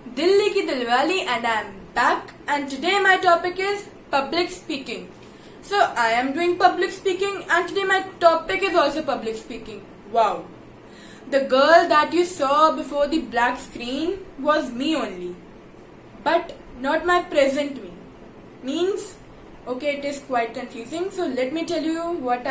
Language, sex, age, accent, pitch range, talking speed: English, female, 20-39, Indian, 255-340 Hz, 155 wpm